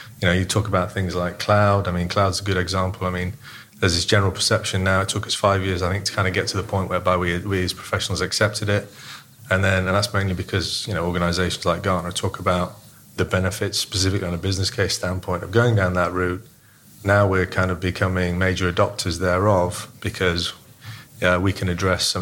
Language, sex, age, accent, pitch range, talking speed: English, male, 30-49, British, 95-110 Hz, 220 wpm